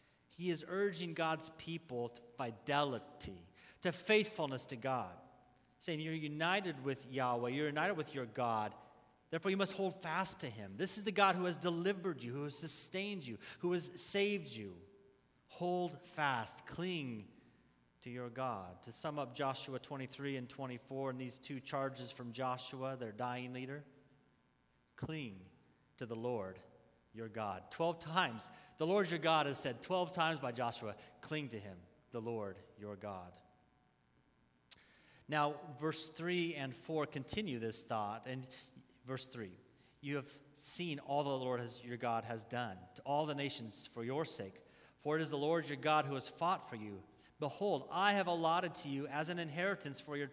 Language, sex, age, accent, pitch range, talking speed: English, male, 40-59, American, 120-160 Hz, 170 wpm